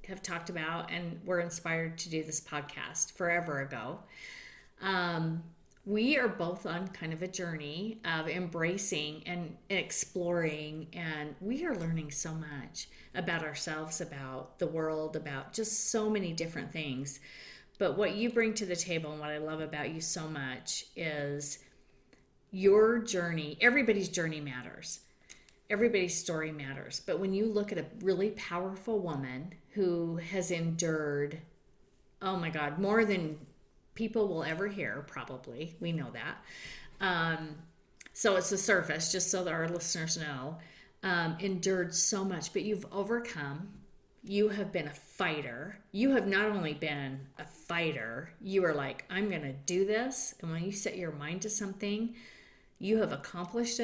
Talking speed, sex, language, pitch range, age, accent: 155 wpm, female, English, 155-195 Hz, 40-59, American